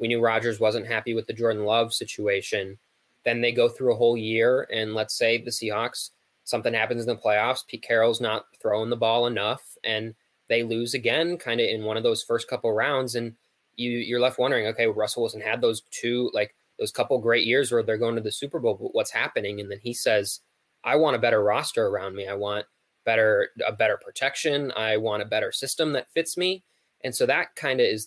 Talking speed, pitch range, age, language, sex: 225 wpm, 110-130 Hz, 20-39, English, male